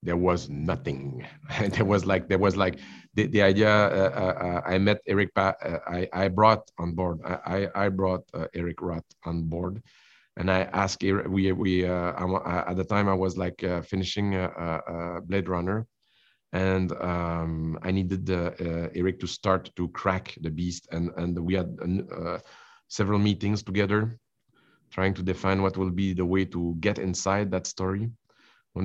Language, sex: English, male